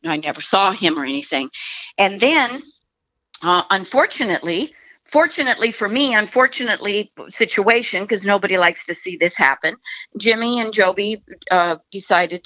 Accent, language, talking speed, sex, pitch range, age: American, English, 130 wpm, female, 180-240 Hz, 50-69